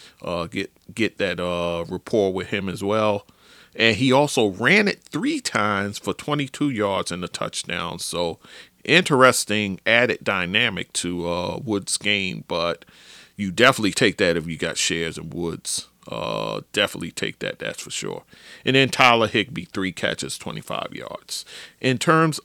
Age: 40-59